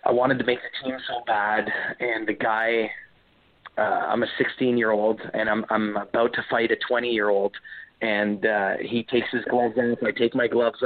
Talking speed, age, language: 215 wpm, 30-49, English